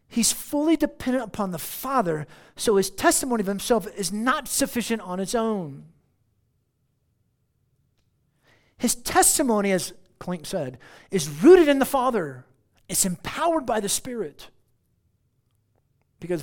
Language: English